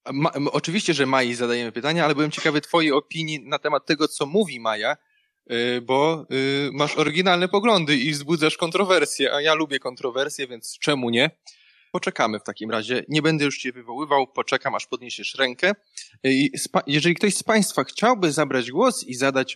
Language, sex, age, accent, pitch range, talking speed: Polish, male, 20-39, native, 115-155 Hz, 165 wpm